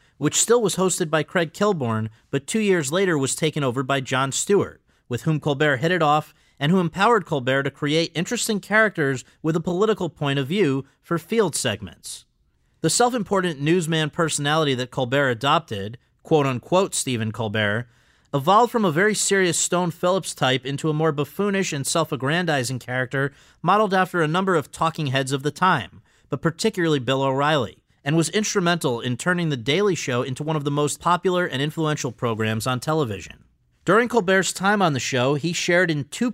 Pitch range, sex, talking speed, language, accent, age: 130-175 Hz, male, 180 wpm, English, American, 40-59